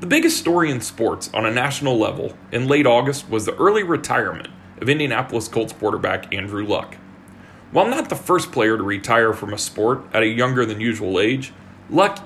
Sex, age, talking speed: male, 40-59, 190 wpm